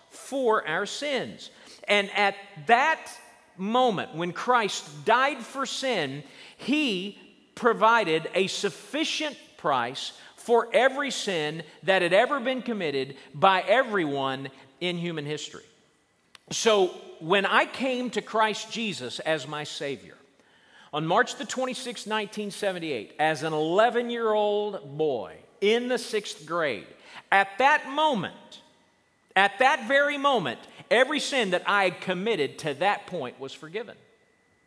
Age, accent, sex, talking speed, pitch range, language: 40-59, American, male, 125 wpm, 180-245 Hz, English